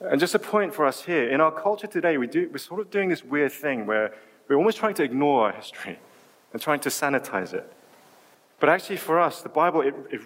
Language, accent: English, British